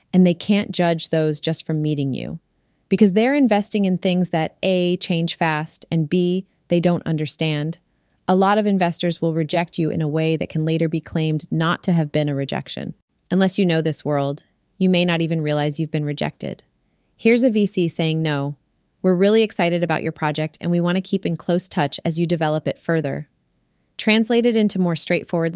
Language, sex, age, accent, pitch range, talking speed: English, female, 30-49, American, 160-190 Hz, 195 wpm